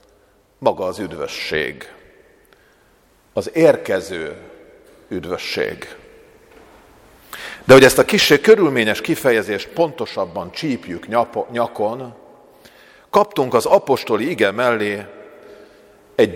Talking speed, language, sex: 80 wpm, Hungarian, male